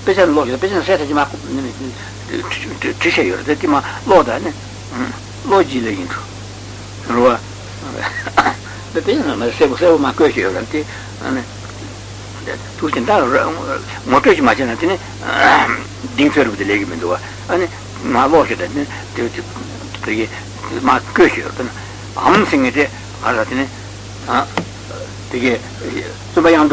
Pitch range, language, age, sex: 100-140 Hz, Italian, 60-79, male